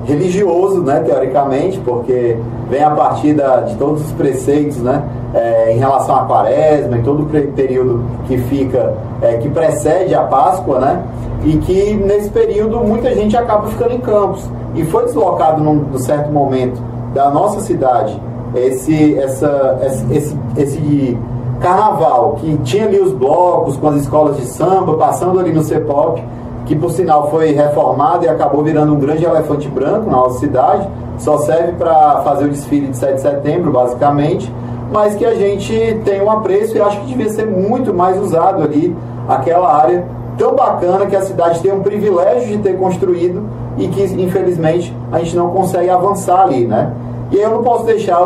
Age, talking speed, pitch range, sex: 30-49, 180 wpm, 130-190 Hz, male